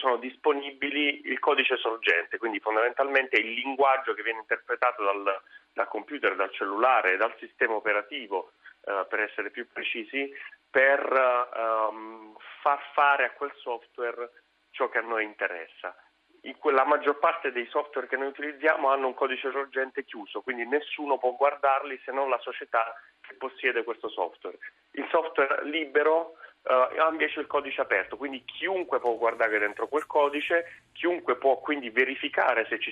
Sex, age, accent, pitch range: male, 30-49, native, 120-150 Hz